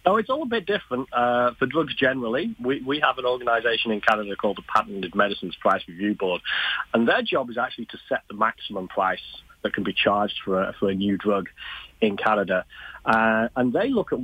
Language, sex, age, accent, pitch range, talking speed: English, male, 30-49, British, 95-120 Hz, 215 wpm